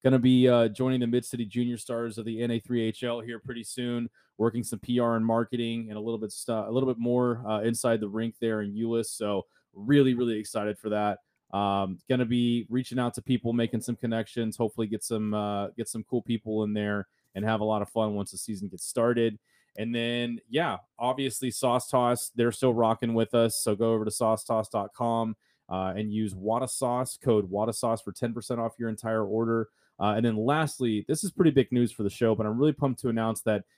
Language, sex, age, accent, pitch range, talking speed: English, male, 20-39, American, 110-125 Hz, 215 wpm